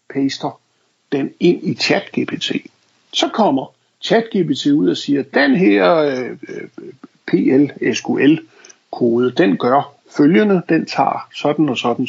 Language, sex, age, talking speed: Danish, male, 60-79, 115 wpm